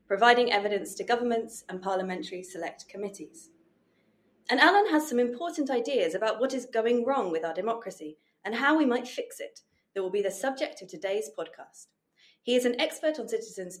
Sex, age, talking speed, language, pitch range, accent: female, 30-49, 185 wpm, English, 190-275 Hz, British